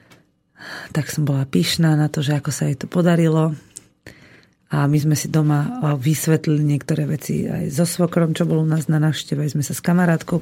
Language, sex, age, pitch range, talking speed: Slovak, female, 40-59, 150-170 Hz, 190 wpm